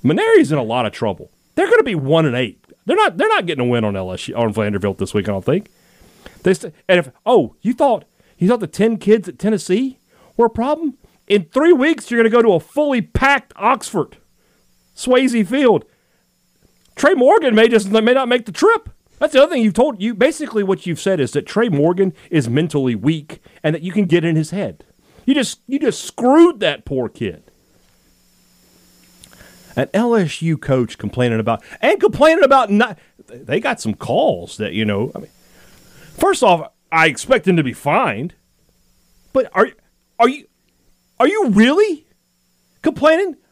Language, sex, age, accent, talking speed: English, male, 40-59, American, 190 wpm